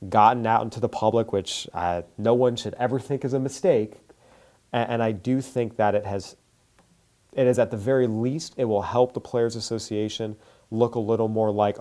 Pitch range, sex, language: 100-120 Hz, male, English